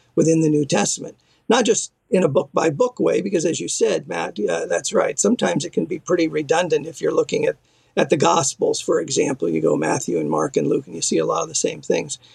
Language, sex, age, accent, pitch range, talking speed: English, male, 50-69, American, 170-245 Hz, 240 wpm